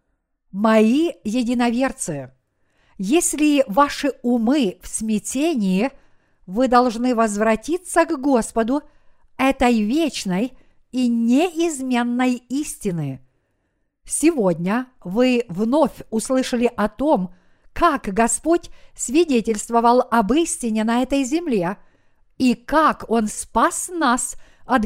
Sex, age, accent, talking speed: female, 50-69, native, 90 wpm